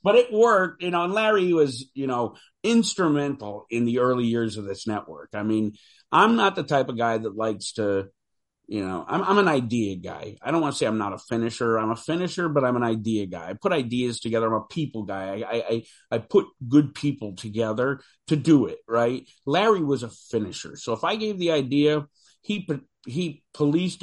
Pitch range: 115-165 Hz